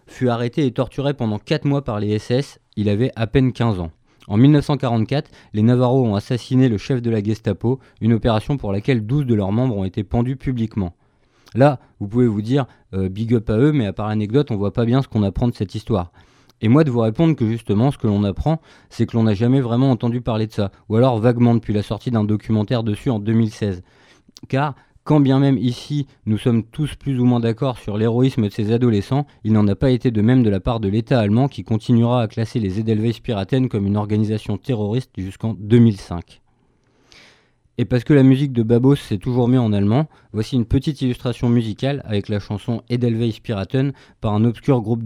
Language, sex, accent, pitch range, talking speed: French, male, French, 105-130 Hz, 220 wpm